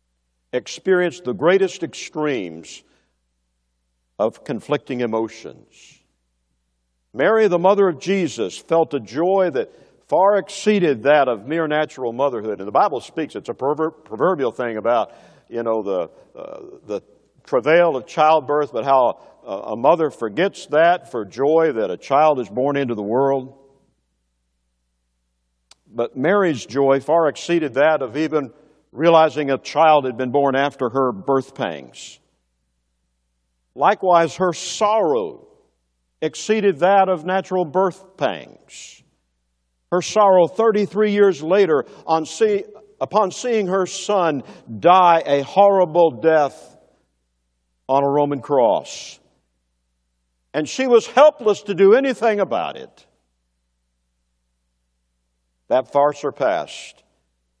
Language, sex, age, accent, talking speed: English, male, 60-79, American, 120 wpm